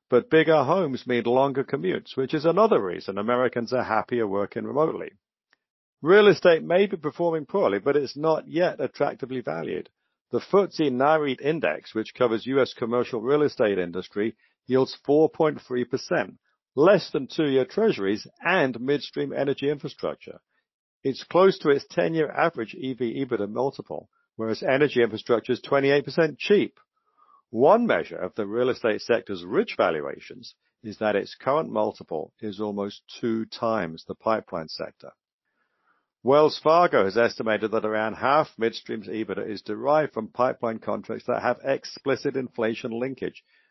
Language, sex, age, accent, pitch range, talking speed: English, male, 50-69, British, 110-150 Hz, 145 wpm